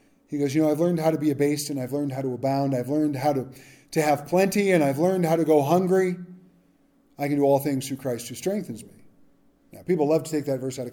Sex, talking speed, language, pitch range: male, 270 wpm, English, 135-170 Hz